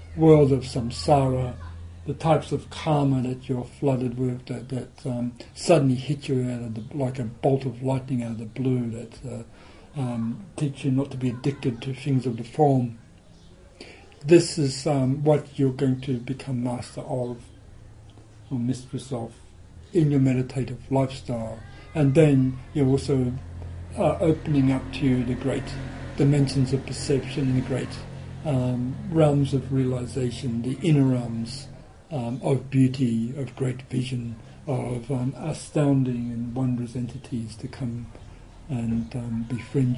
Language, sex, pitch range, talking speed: English, male, 115-135 Hz, 150 wpm